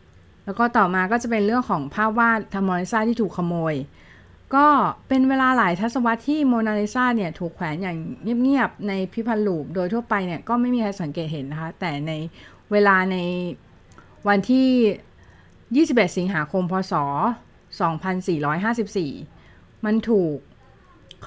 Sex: female